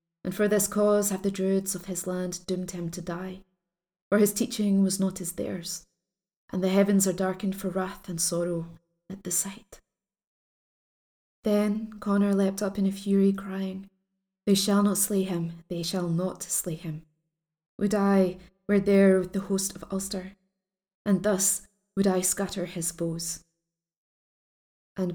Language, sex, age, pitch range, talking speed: English, female, 20-39, 175-195 Hz, 160 wpm